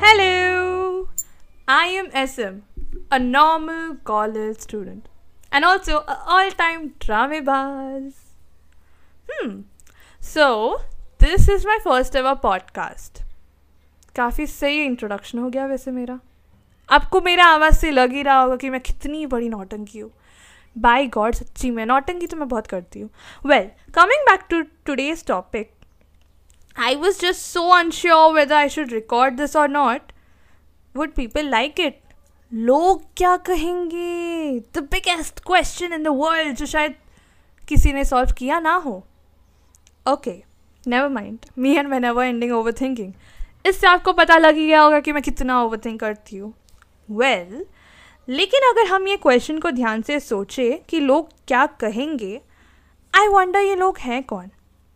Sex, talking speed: female, 140 wpm